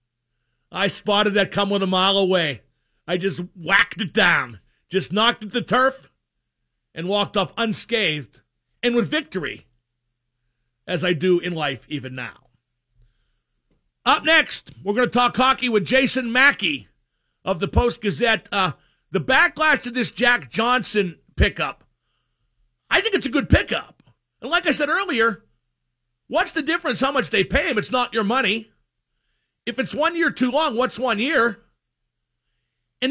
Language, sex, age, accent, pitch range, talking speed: English, male, 50-69, American, 175-270 Hz, 155 wpm